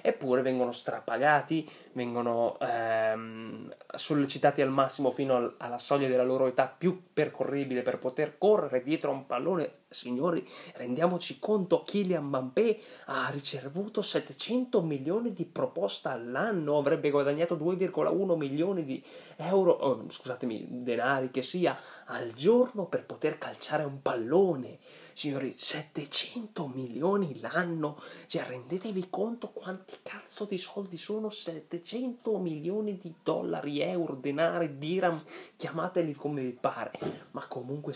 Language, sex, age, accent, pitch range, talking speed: Italian, male, 30-49, native, 135-185 Hz, 125 wpm